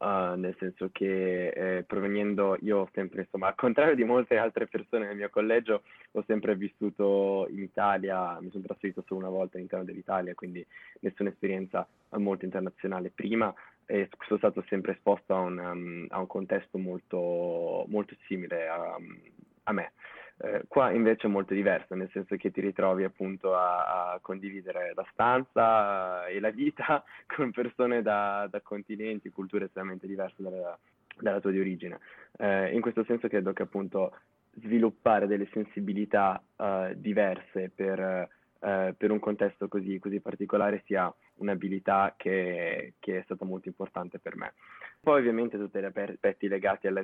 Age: 20-39